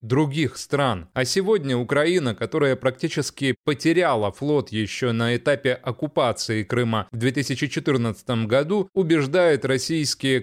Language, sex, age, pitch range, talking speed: Russian, male, 20-39, 120-150 Hz, 110 wpm